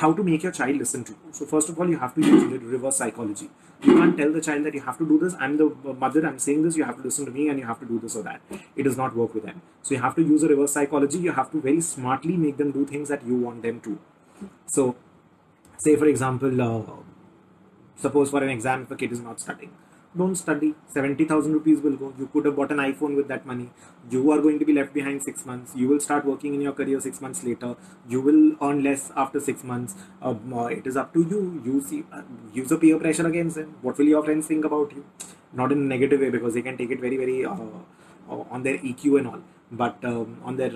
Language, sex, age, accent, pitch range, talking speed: English, male, 30-49, Indian, 130-155 Hz, 260 wpm